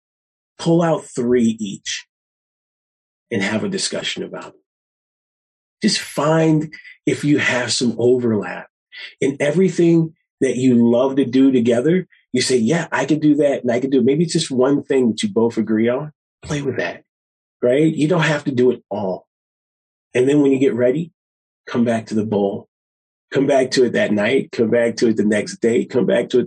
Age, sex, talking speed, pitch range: 30-49, male, 195 wpm, 105-140 Hz